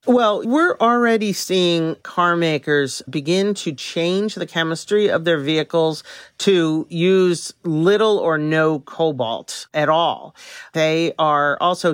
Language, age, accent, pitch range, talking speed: English, 50-69, American, 155-200 Hz, 125 wpm